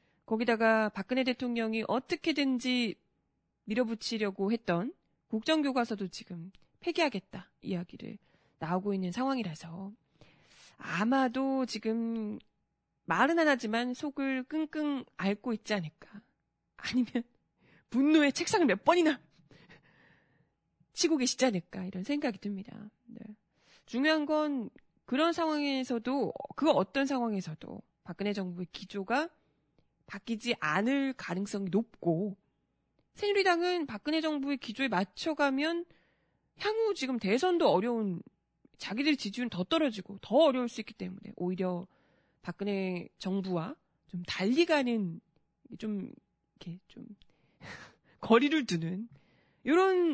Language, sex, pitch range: Korean, female, 190-270 Hz